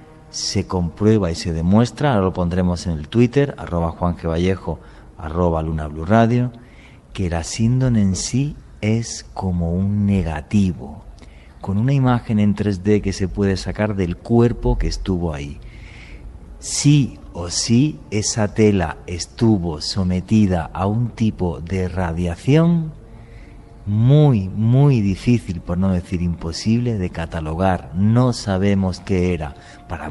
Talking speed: 135 wpm